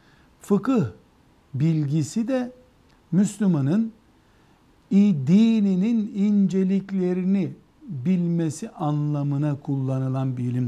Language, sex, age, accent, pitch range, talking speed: Turkish, male, 60-79, native, 125-200 Hz, 60 wpm